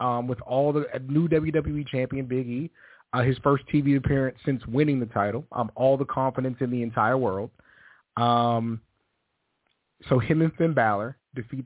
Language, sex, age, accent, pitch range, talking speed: English, male, 30-49, American, 115-140 Hz, 175 wpm